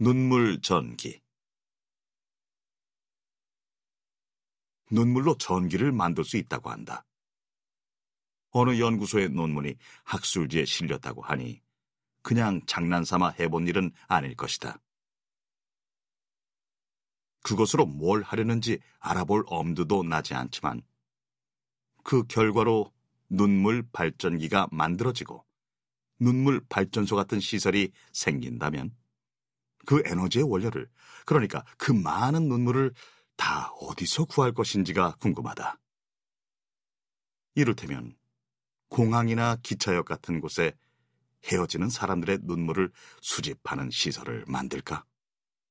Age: 40-59